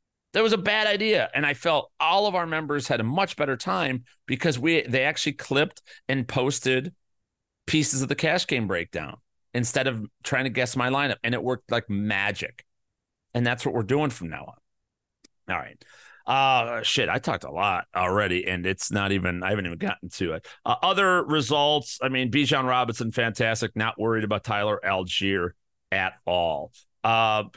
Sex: male